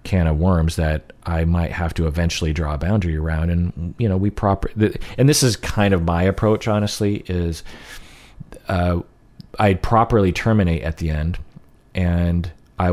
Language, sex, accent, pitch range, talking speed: English, male, American, 80-95 Hz, 165 wpm